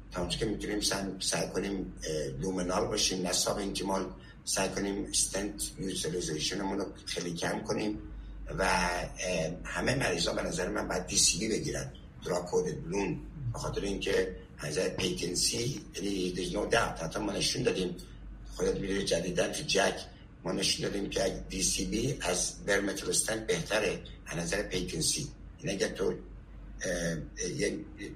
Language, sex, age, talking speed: Persian, male, 60-79, 125 wpm